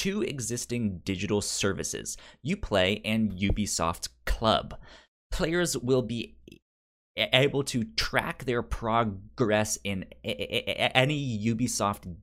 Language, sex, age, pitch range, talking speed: English, male, 20-39, 100-130 Hz, 95 wpm